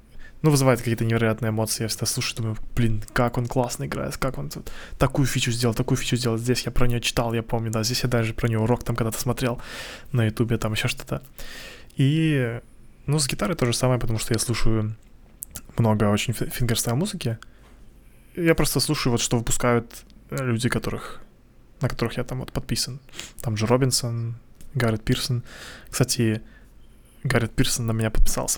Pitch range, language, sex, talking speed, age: 115-130 Hz, Russian, male, 175 wpm, 20-39